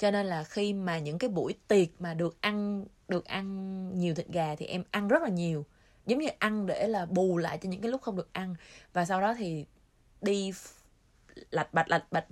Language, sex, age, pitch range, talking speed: Vietnamese, female, 20-39, 170-210 Hz, 225 wpm